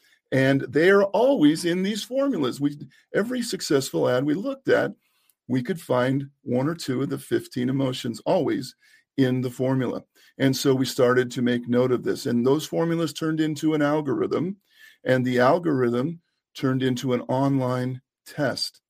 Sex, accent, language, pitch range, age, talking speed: male, American, English, 120-150 Hz, 50-69, 165 wpm